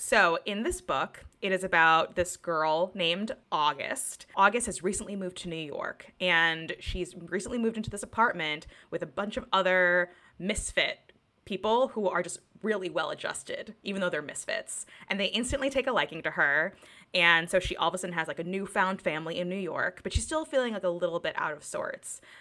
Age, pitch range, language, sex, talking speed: 20-39, 170-215 Hz, English, female, 205 wpm